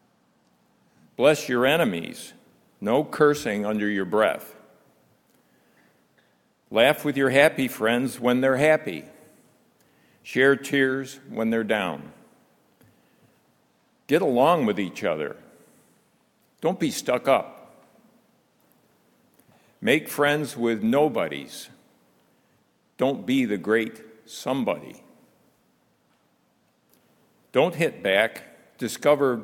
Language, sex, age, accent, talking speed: English, male, 60-79, American, 90 wpm